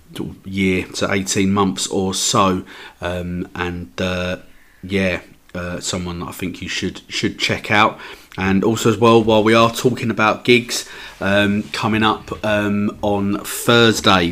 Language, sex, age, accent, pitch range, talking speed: English, male, 40-59, British, 90-100 Hz, 145 wpm